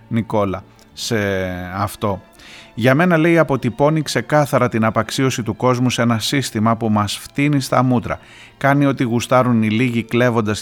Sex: male